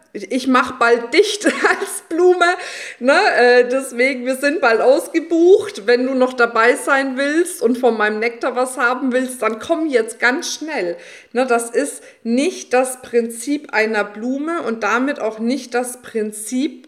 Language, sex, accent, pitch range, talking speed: German, female, German, 220-275 Hz, 155 wpm